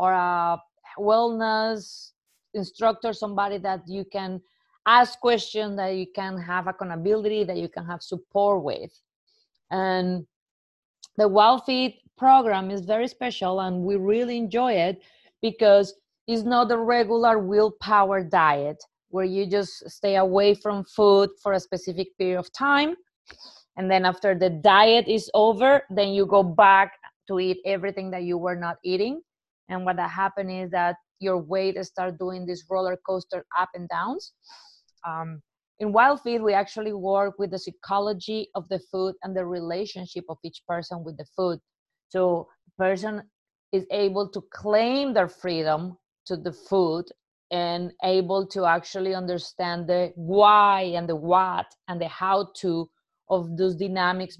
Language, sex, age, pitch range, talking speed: English, female, 30-49, 180-210 Hz, 150 wpm